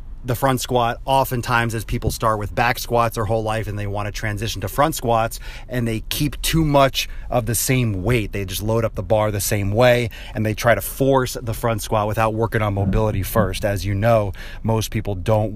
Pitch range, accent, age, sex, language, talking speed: 105-125 Hz, American, 30-49, male, English, 225 wpm